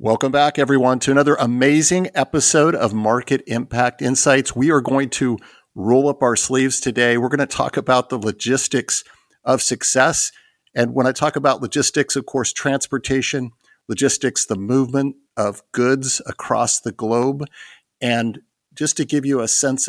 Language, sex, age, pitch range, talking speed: English, male, 50-69, 115-140 Hz, 160 wpm